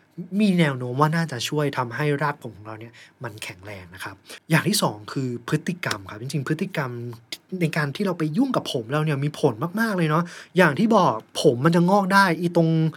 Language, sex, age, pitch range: Thai, male, 20-39, 135-180 Hz